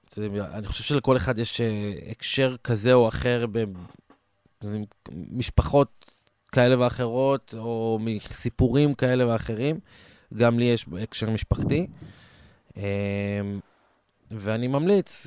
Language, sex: Hebrew, male